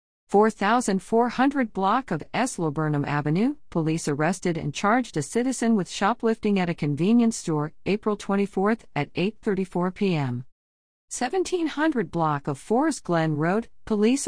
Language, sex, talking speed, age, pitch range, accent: English, female, 125 wpm, 50-69, 155-205 Hz, American